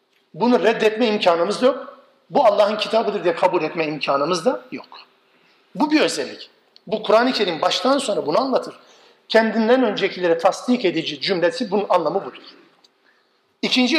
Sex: male